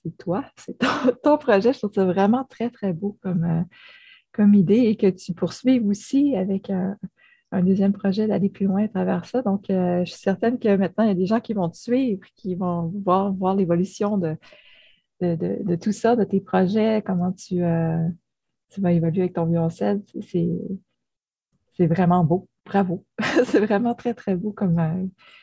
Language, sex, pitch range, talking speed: French, female, 180-220 Hz, 200 wpm